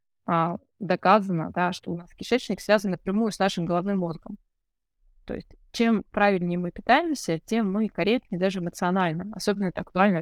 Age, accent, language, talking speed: 20-39, native, Russian, 155 wpm